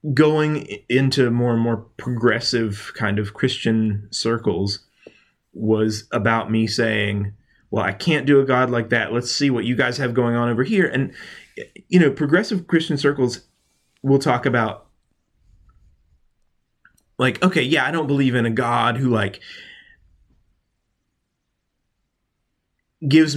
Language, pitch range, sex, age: English, 115-135 Hz, male, 30-49